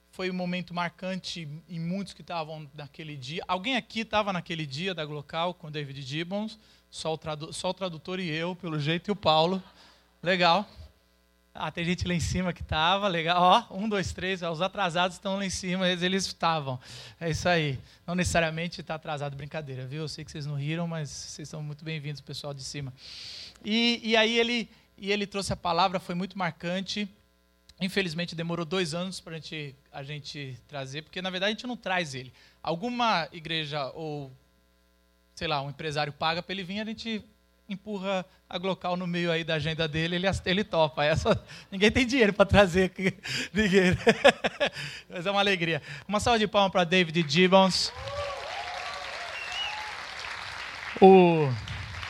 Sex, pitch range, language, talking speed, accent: male, 155-195 Hz, Portuguese, 180 wpm, Brazilian